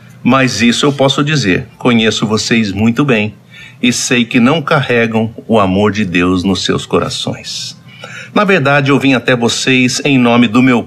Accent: Brazilian